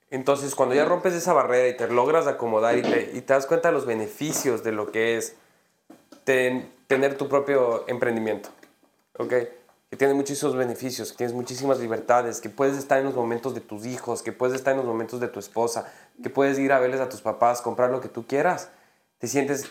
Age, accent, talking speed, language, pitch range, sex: 20-39, Mexican, 215 wpm, Spanish, 115-140 Hz, male